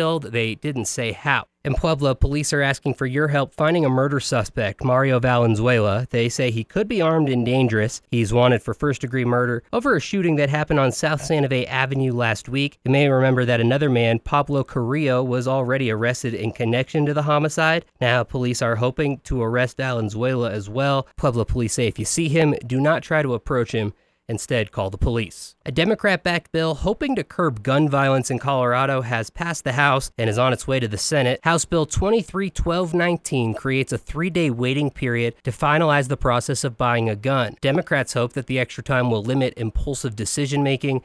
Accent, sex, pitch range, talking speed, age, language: American, male, 120-150 Hz, 195 wpm, 20-39, English